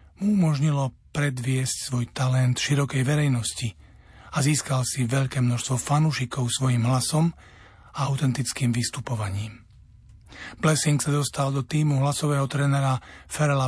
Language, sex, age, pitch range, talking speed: Slovak, male, 40-59, 115-140 Hz, 110 wpm